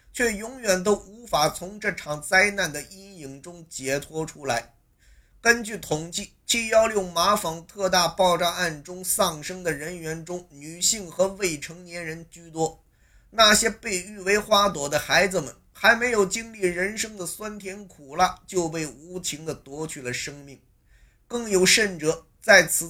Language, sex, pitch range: Chinese, male, 140-195 Hz